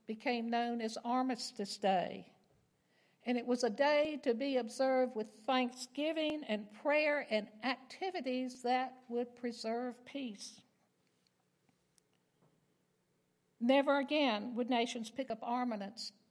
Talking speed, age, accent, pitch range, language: 110 wpm, 60-79, American, 230-295 Hz, English